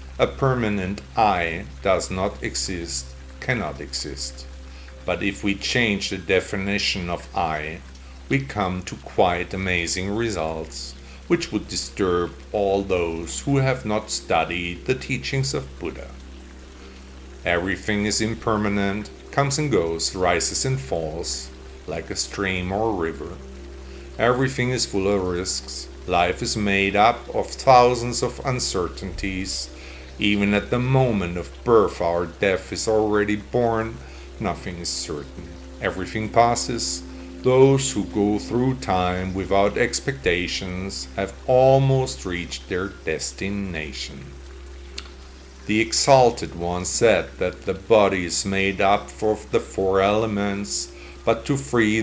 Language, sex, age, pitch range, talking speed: English, male, 50-69, 70-110 Hz, 125 wpm